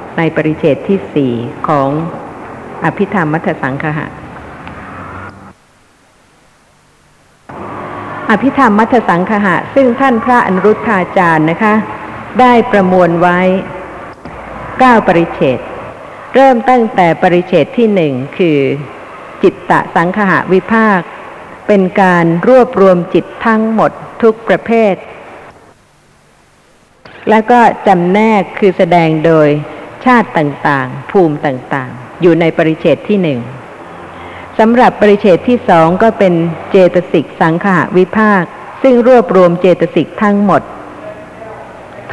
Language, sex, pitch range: Thai, female, 165-215 Hz